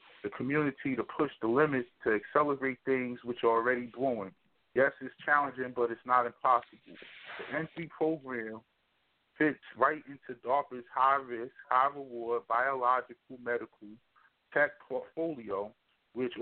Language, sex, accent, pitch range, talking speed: English, male, American, 120-140 Hz, 125 wpm